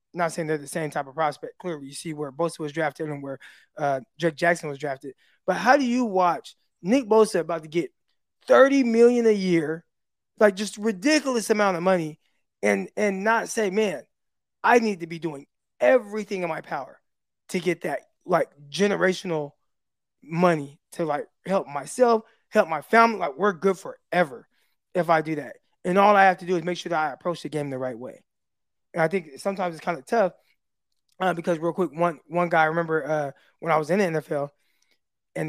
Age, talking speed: 20-39, 200 wpm